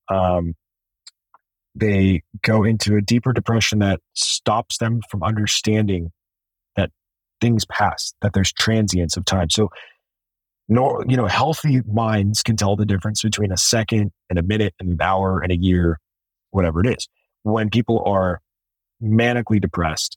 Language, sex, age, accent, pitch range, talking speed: English, male, 30-49, American, 95-115 Hz, 150 wpm